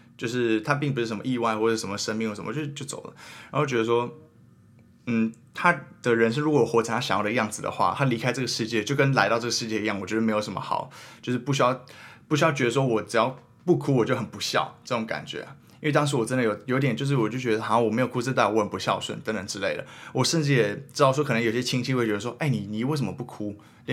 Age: 20-39